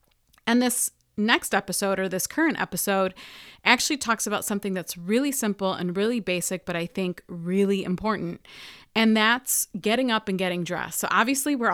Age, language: 30-49, English